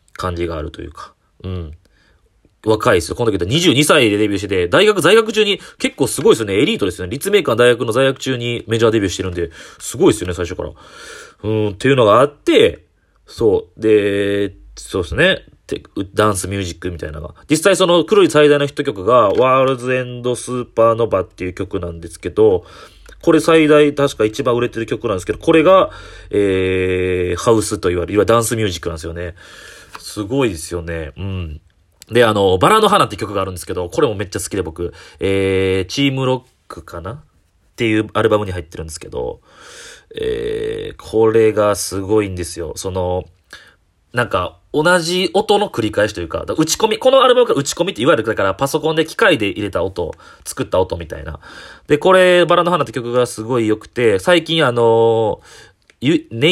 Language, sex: Japanese, male